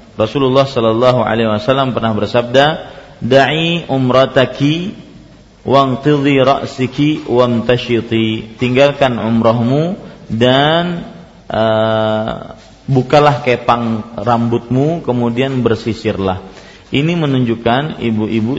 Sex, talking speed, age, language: male, 80 wpm, 40-59, Malay